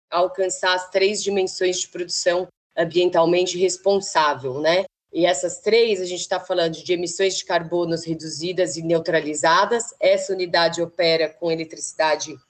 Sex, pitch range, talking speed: female, 165-190 Hz, 135 wpm